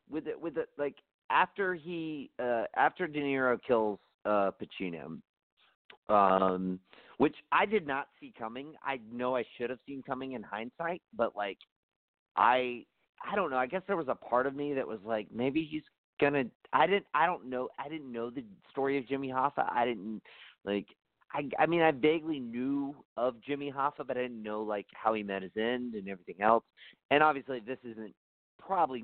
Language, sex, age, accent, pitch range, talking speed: English, male, 40-59, American, 100-135 Hz, 190 wpm